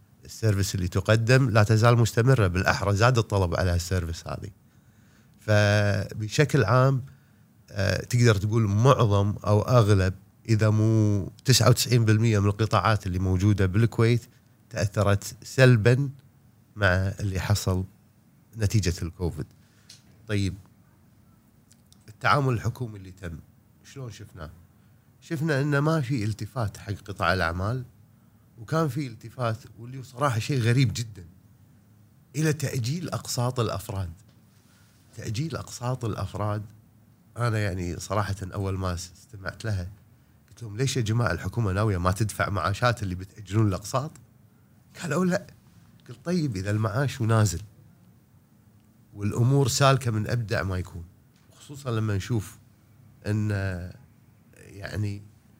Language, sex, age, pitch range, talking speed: Arabic, male, 30-49, 100-120 Hz, 110 wpm